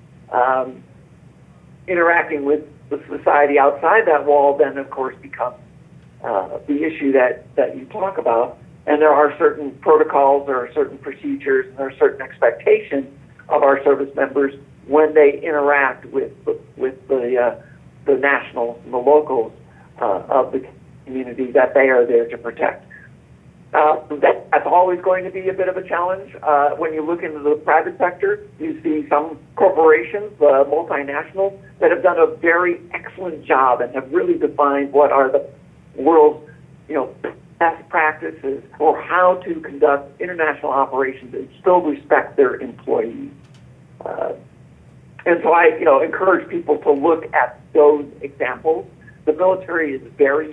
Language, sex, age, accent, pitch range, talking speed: English, male, 50-69, American, 140-180 Hz, 155 wpm